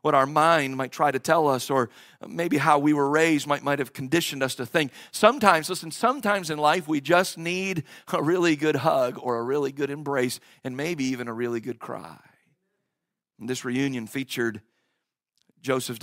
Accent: American